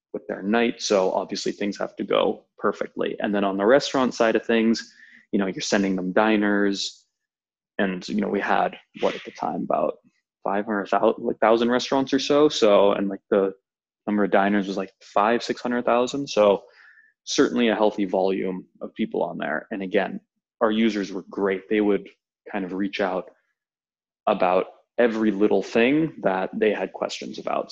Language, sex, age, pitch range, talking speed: English, male, 20-39, 95-110 Hz, 180 wpm